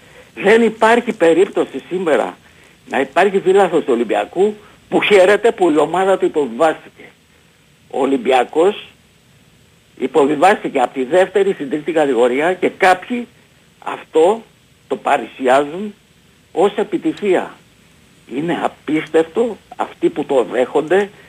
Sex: male